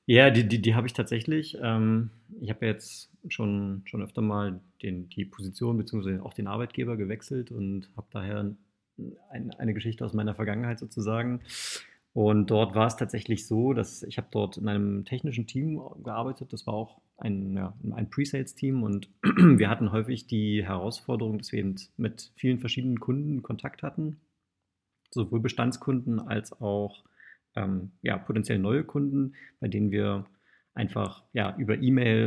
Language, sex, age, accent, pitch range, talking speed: German, male, 30-49, German, 105-125 Hz, 150 wpm